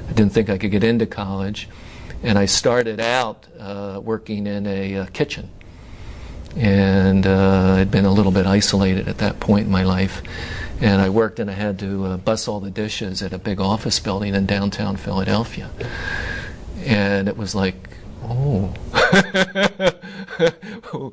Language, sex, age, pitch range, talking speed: English, male, 50-69, 95-110 Hz, 160 wpm